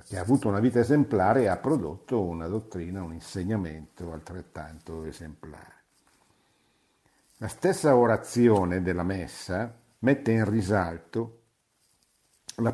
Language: Italian